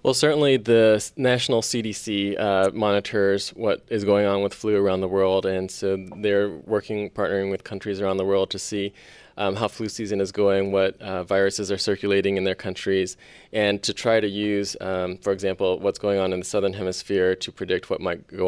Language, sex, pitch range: English, male, 95-105 Hz